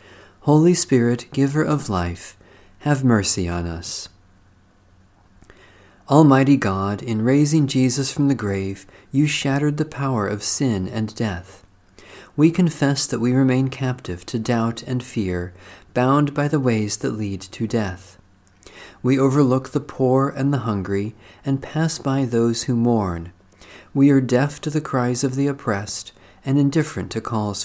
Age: 40-59